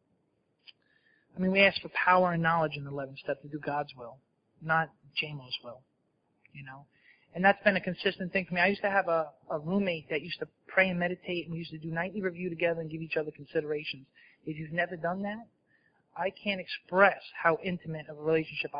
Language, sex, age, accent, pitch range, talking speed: English, male, 30-49, American, 155-195 Hz, 215 wpm